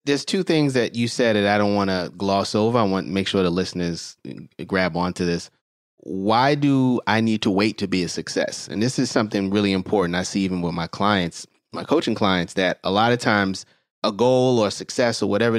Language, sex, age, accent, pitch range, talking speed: English, male, 30-49, American, 100-125 Hz, 225 wpm